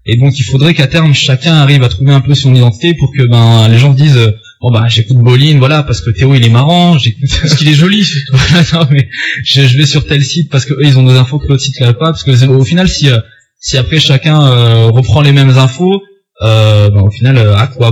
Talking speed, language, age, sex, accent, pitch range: 260 wpm, French, 20-39, male, French, 120-145 Hz